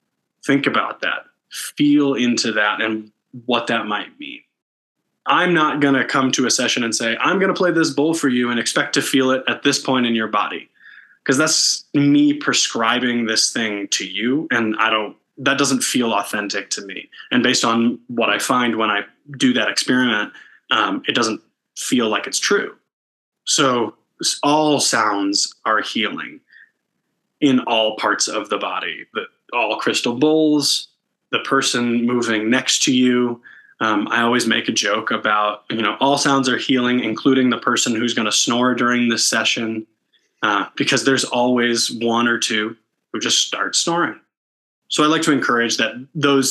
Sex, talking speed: male, 175 wpm